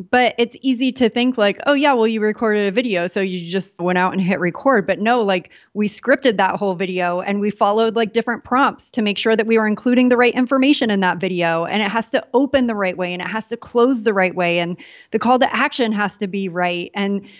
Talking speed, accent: 255 wpm, American